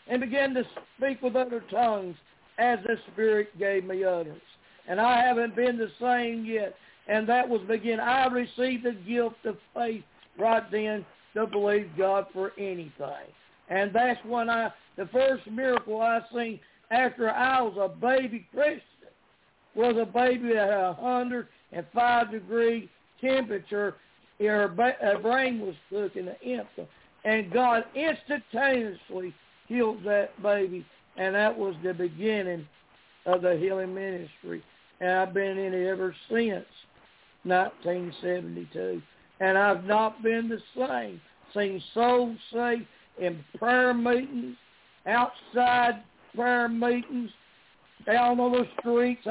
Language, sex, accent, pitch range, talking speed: English, male, American, 200-245 Hz, 130 wpm